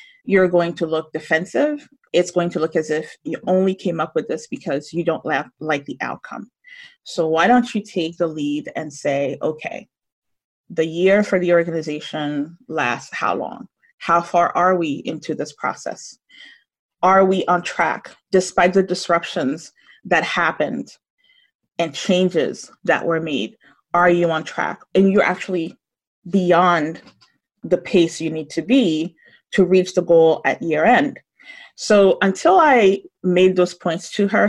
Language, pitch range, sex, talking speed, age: English, 160-200 Hz, female, 160 wpm, 30-49